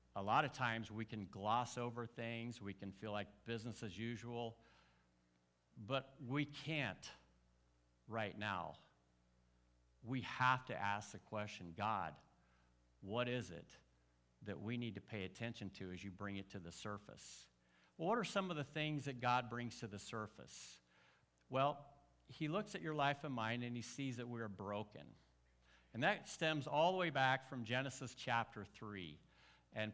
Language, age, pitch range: English, 50-69, 105-135 Hz